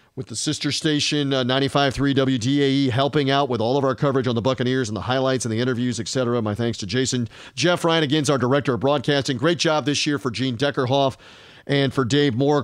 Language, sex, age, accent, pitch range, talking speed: English, male, 40-59, American, 130-155 Hz, 230 wpm